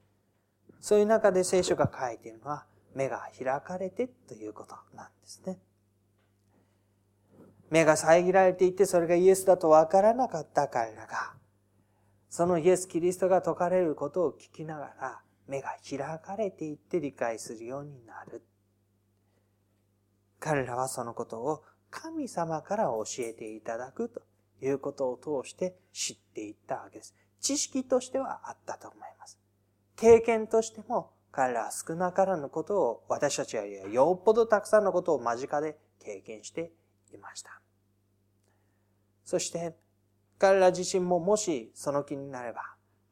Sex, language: male, Japanese